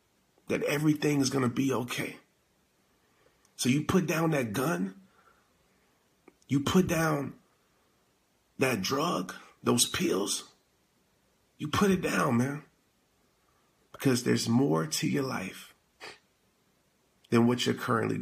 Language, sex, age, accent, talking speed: English, male, 40-59, American, 115 wpm